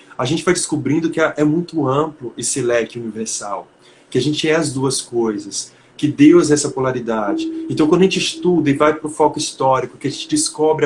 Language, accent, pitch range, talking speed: Portuguese, Brazilian, 125-150 Hz, 210 wpm